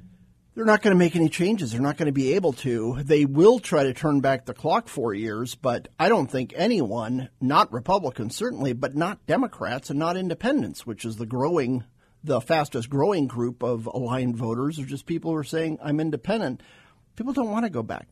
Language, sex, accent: English, male, American